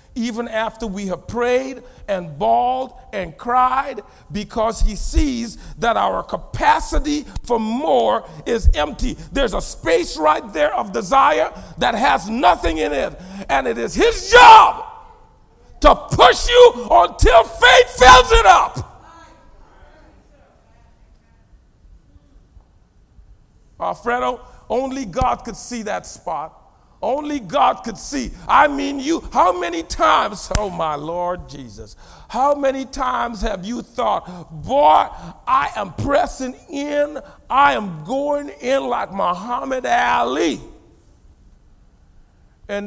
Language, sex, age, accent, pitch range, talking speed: English, male, 40-59, American, 165-255 Hz, 120 wpm